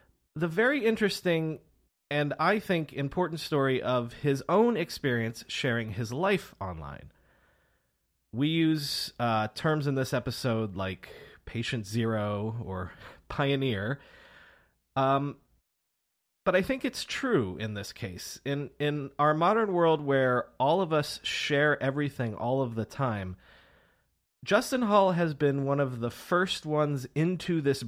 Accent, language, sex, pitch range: American, English, male, 115-170 Hz